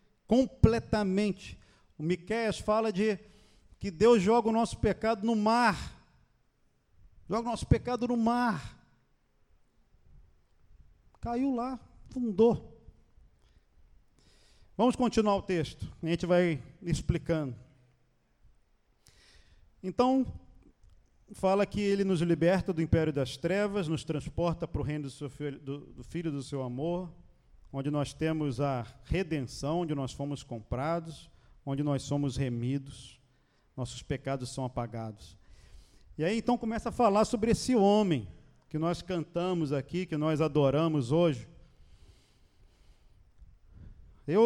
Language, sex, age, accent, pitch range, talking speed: Portuguese, male, 50-69, Brazilian, 140-220 Hz, 115 wpm